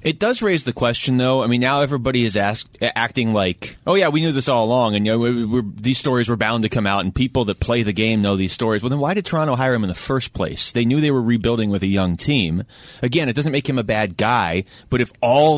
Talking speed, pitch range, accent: 260 wpm, 95-125 Hz, American